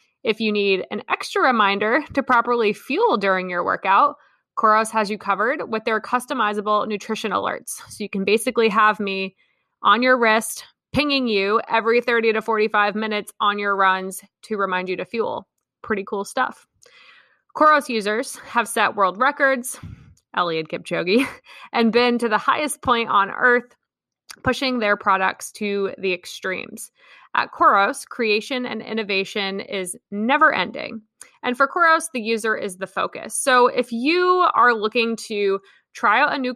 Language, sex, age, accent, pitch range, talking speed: English, female, 20-39, American, 200-250 Hz, 155 wpm